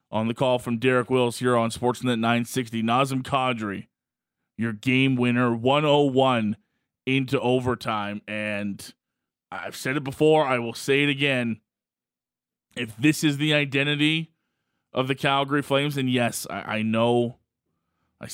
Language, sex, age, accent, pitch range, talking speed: English, male, 20-39, American, 115-135 Hz, 140 wpm